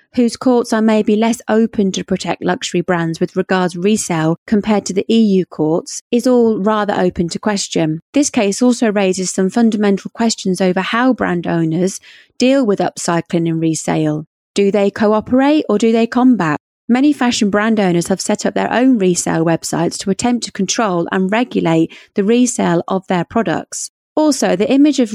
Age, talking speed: 30-49, 175 wpm